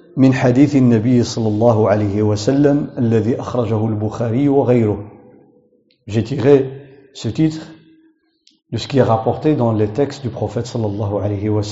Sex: male